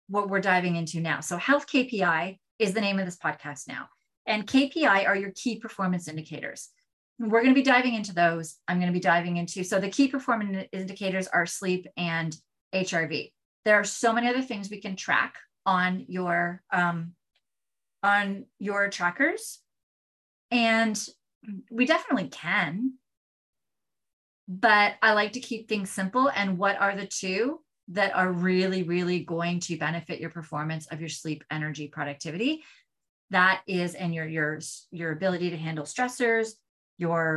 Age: 30-49